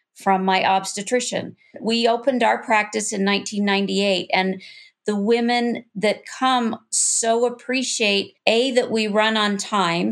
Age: 40-59